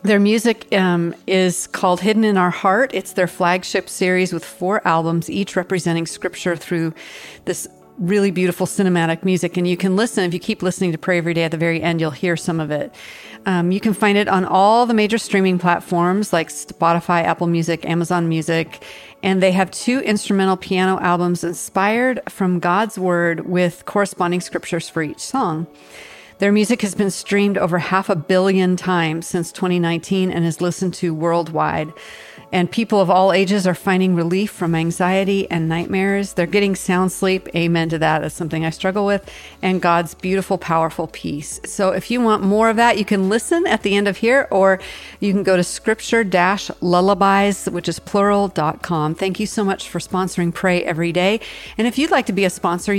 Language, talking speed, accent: English, 190 wpm, American